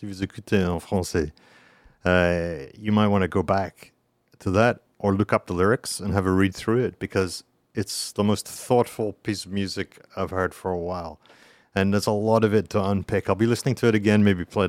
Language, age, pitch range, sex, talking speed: French, 40-59, 95-110 Hz, male, 200 wpm